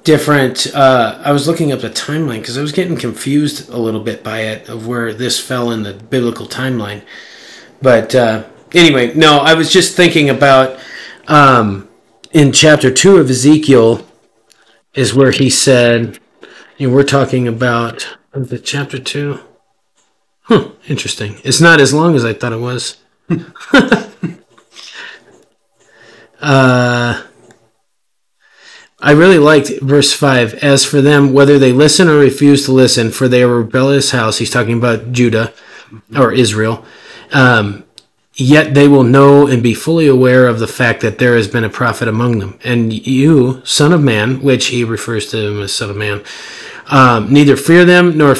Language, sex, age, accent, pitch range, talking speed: English, male, 40-59, American, 120-145 Hz, 160 wpm